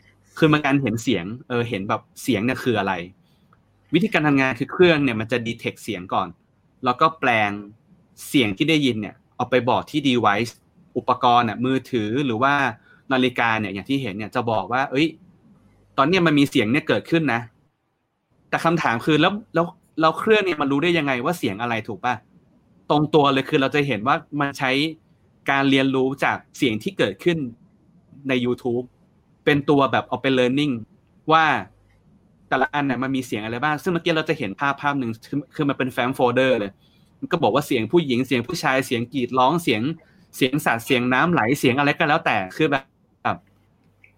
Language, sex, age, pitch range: Thai, male, 30-49, 120-155 Hz